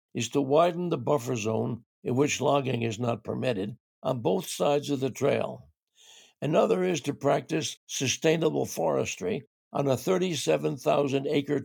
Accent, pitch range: American, 125-155 Hz